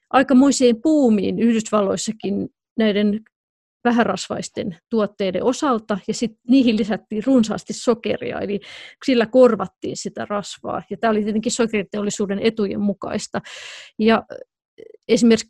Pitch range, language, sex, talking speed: 200-235 Hz, Finnish, female, 100 wpm